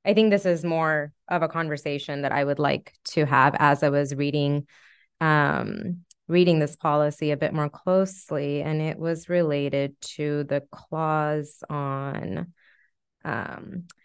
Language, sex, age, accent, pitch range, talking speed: English, female, 20-39, American, 155-190 Hz, 150 wpm